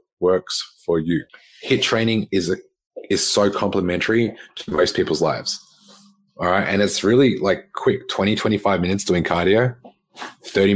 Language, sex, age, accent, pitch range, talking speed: English, male, 20-39, Australian, 90-110 Hz, 145 wpm